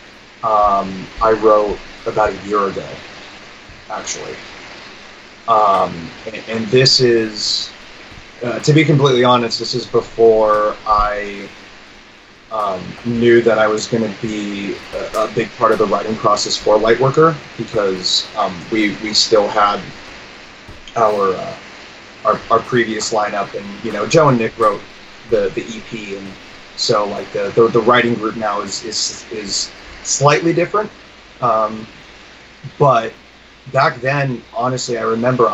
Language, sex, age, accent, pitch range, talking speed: English, male, 30-49, American, 105-120 Hz, 140 wpm